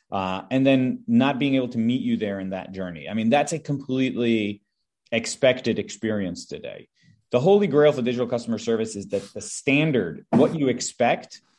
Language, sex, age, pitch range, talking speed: English, male, 30-49, 105-130 Hz, 180 wpm